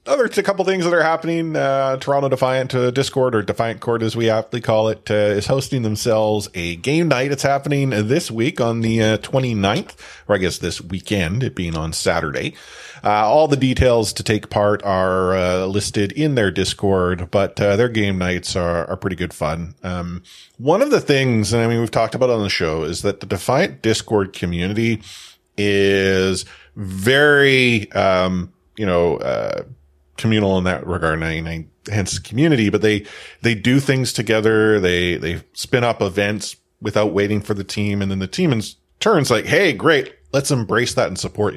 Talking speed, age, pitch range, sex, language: 195 wpm, 30-49, 95-125 Hz, male, English